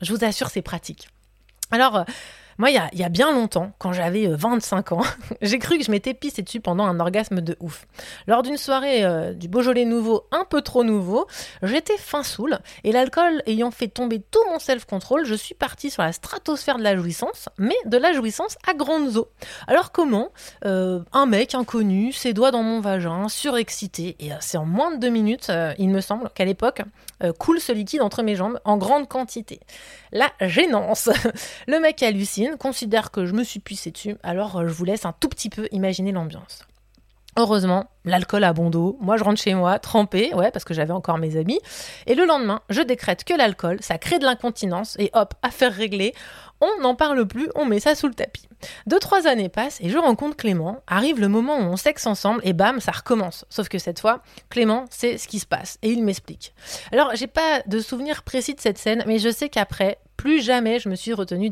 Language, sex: French, female